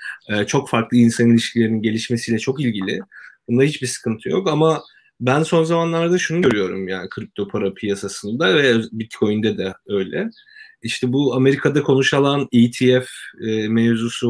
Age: 30-49